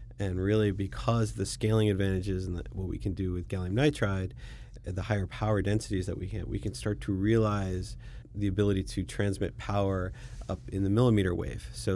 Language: English